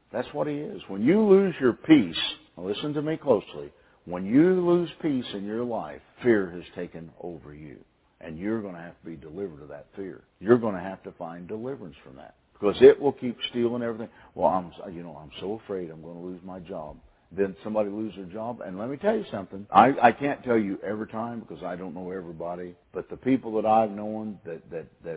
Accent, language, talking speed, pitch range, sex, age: American, English, 230 wpm, 90-115 Hz, male, 50-69